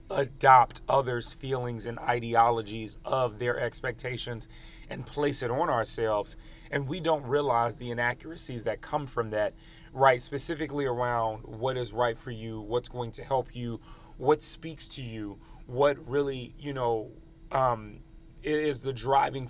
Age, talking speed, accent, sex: 30-49, 150 wpm, American, male